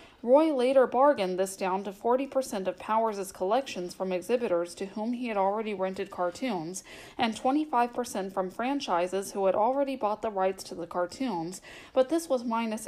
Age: 40-59